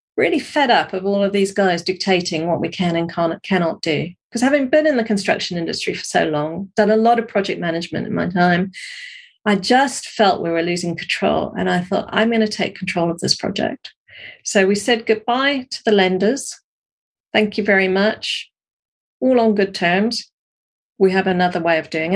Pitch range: 175-215 Hz